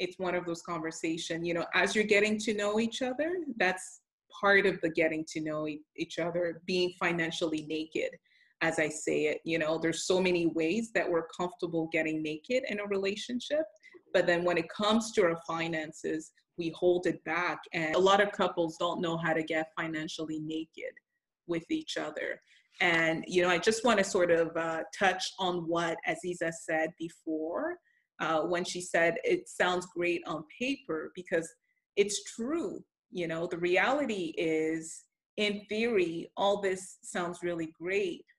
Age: 30-49